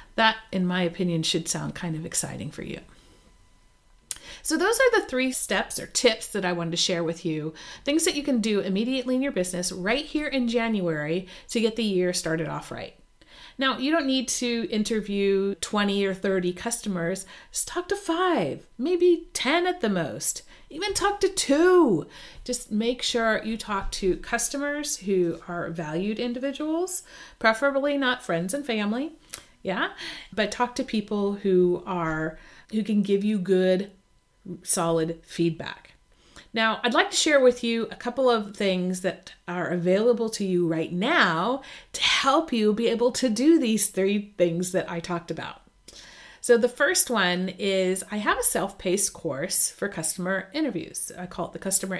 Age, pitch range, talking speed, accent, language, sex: 40-59, 180-245 Hz, 170 wpm, American, English, female